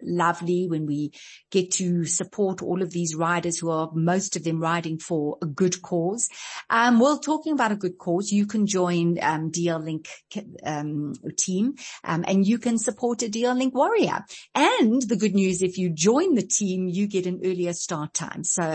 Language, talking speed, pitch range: English, 190 wpm, 165-215 Hz